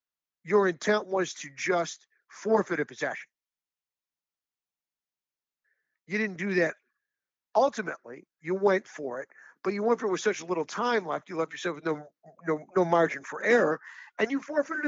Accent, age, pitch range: American, 50-69, 185-275 Hz